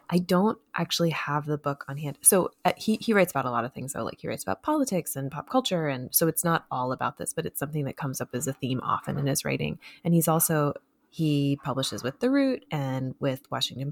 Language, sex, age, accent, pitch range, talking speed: English, female, 20-39, American, 135-170 Hz, 250 wpm